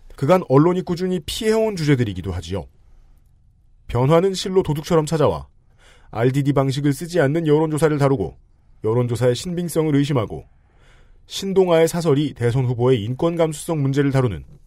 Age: 40-59